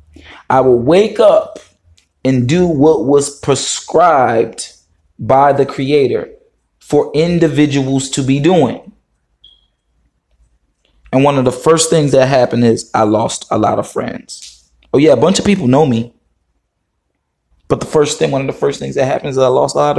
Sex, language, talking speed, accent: male, English, 170 wpm, American